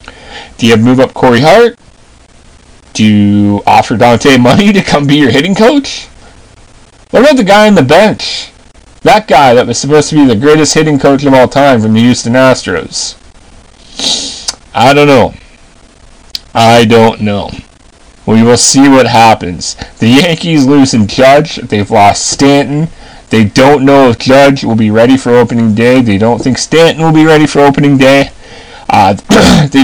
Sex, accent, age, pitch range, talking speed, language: male, American, 30-49, 115-145 Hz, 170 wpm, English